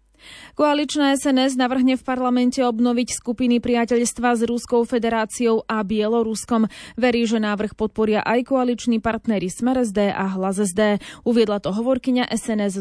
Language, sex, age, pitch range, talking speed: Slovak, female, 20-39, 215-245 Hz, 125 wpm